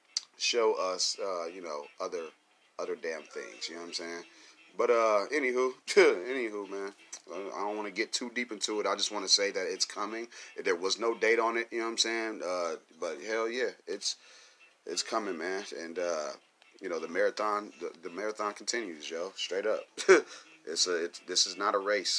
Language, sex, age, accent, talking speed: English, male, 30-49, American, 205 wpm